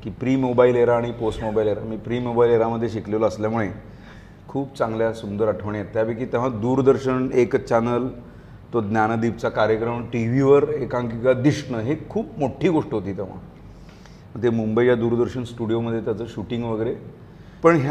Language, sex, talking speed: Marathi, male, 155 wpm